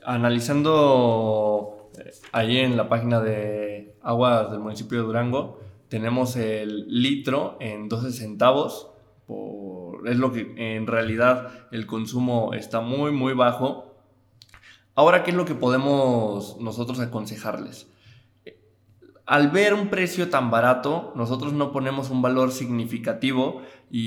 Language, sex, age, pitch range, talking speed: Spanish, male, 20-39, 110-130 Hz, 120 wpm